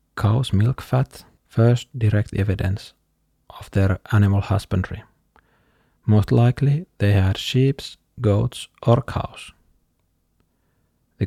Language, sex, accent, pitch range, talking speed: English, male, Finnish, 100-125 Hz, 100 wpm